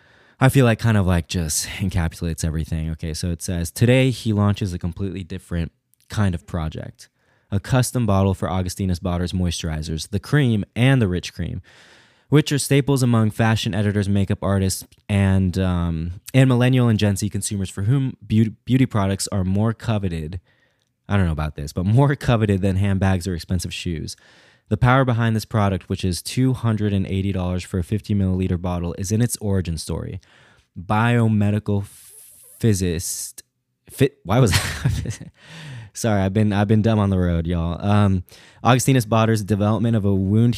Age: 20-39